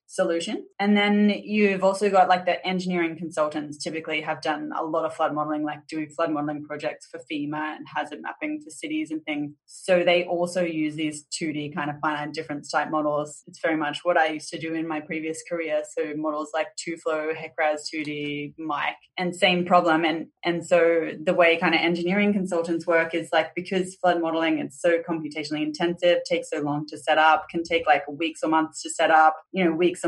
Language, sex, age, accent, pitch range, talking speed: English, female, 20-39, Australian, 155-175 Hz, 205 wpm